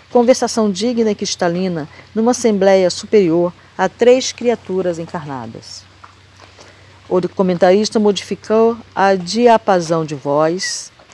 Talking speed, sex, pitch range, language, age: 95 wpm, female, 160-220 Hz, Portuguese, 40-59